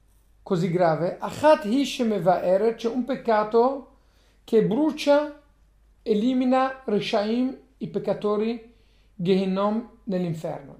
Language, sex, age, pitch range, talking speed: Italian, male, 50-69, 195-250 Hz, 100 wpm